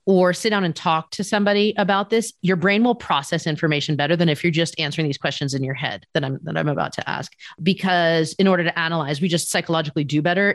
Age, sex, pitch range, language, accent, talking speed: 40-59, female, 160-205 Hz, English, American, 240 wpm